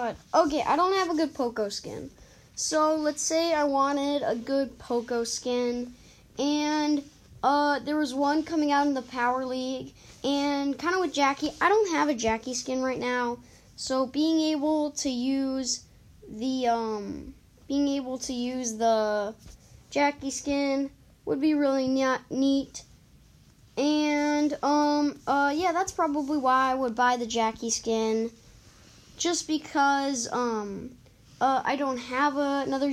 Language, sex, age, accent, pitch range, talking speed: English, female, 10-29, American, 240-290 Hz, 145 wpm